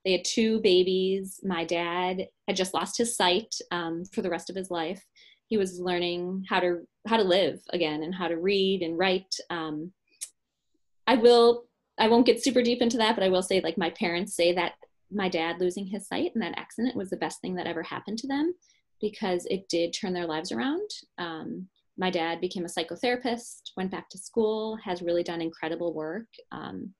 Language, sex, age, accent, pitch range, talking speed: English, female, 20-39, American, 175-220 Hz, 205 wpm